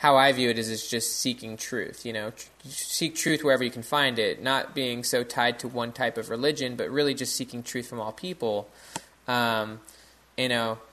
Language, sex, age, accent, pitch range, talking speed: English, male, 20-39, American, 110-125 Hz, 215 wpm